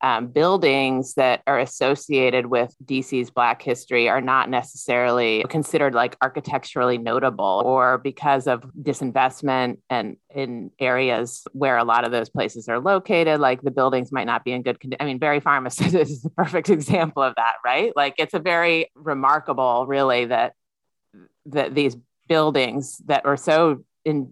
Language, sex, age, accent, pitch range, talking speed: English, female, 30-49, American, 125-145 Hz, 160 wpm